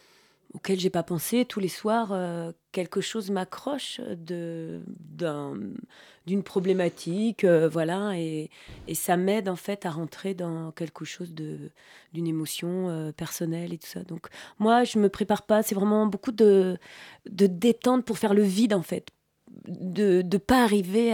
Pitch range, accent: 170-210 Hz, French